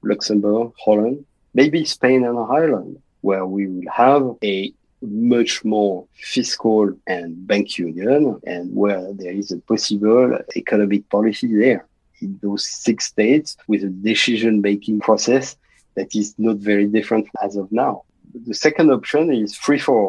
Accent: French